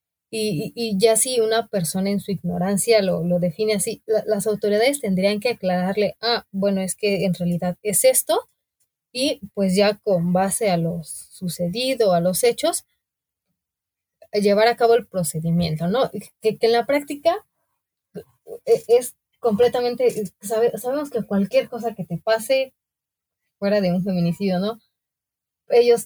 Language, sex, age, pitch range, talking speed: Spanish, female, 20-39, 180-230 Hz, 145 wpm